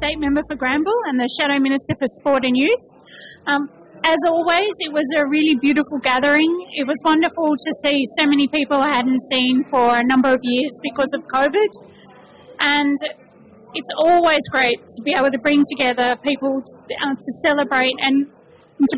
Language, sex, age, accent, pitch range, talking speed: English, female, 30-49, Australian, 255-300 Hz, 180 wpm